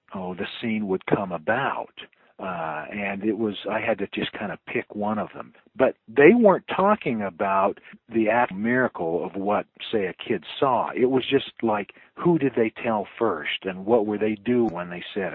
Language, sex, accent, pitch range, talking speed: English, male, American, 95-120 Hz, 200 wpm